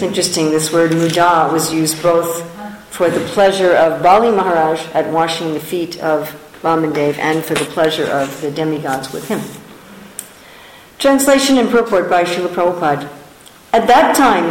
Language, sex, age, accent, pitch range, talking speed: English, female, 50-69, American, 160-225 Hz, 155 wpm